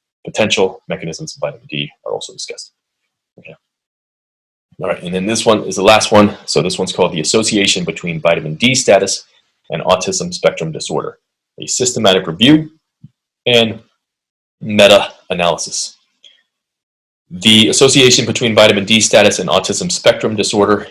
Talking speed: 140 wpm